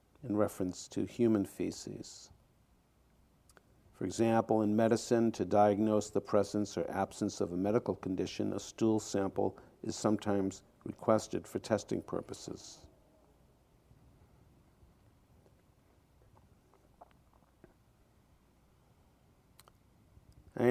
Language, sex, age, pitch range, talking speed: English, male, 50-69, 100-120 Hz, 85 wpm